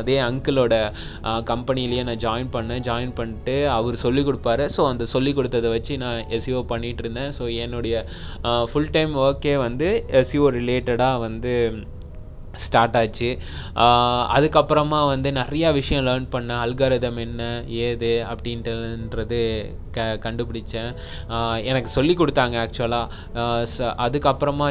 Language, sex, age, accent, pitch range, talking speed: Tamil, male, 20-39, native, 115-130 Hz, 115 wpm